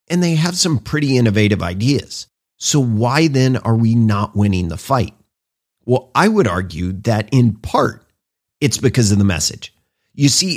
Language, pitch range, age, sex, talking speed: English, 105-150 Hz, 40-59, male, 170 wpm